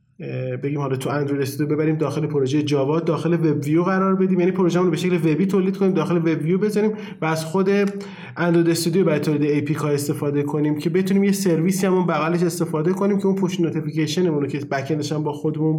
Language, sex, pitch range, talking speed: Persian, male, 150-185 Hz, 195 wpm